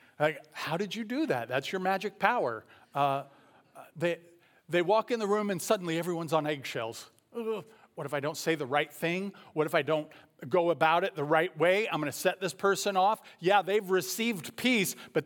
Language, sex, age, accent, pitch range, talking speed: English, male, 40-59, American, 145-190 Hz, 210 wpm